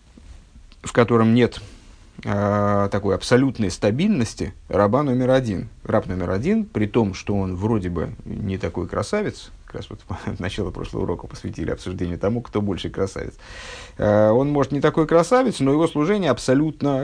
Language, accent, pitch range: Russian, native, 100-125 Hz